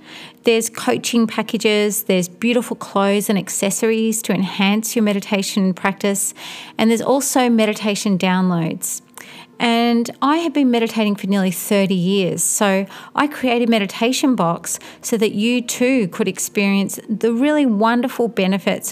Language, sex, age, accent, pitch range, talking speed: English, female, 30-49, Australian, 190-235 Hz, 135 wpm